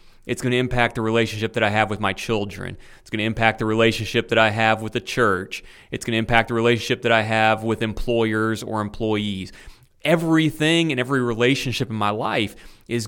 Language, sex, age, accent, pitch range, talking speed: English, male, 30-49, American, 110-130 Hz, 205 wpm